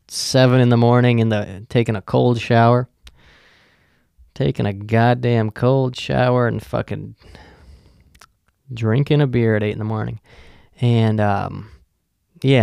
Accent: American